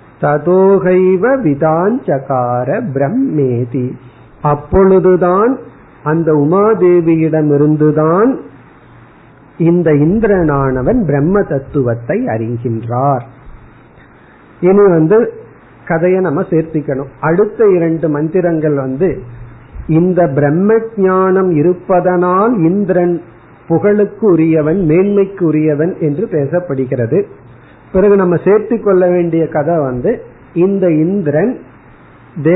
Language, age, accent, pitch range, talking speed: Tamil, 50-69, native, 140-185 Hz, 65 wpm